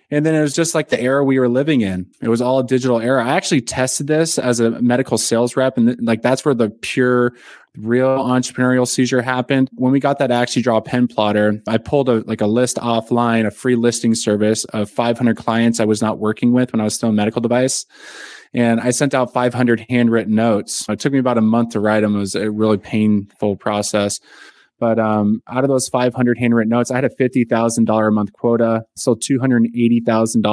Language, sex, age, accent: English, male, 20-39, American